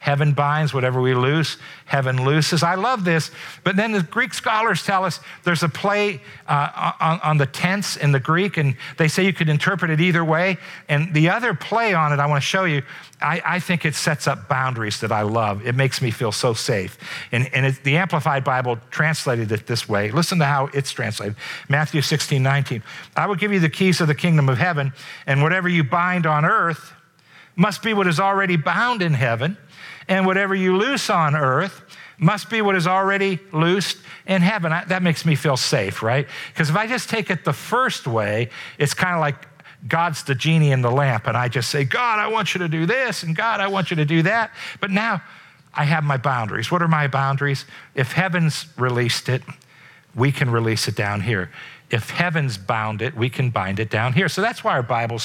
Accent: American